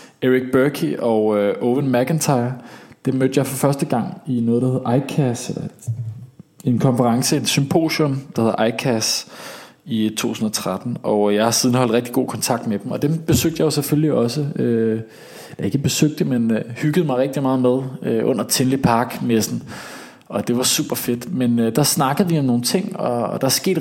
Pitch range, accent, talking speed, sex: 115-150 Hz, Danish, 190 wpm, male